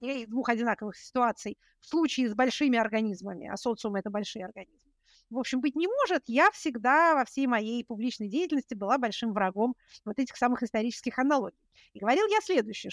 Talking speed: 175 wpm